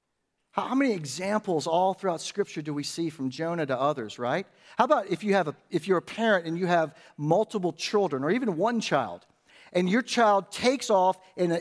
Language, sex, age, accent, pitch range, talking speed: English, male, 50-69, American, 135-190 Hz, 205 wpm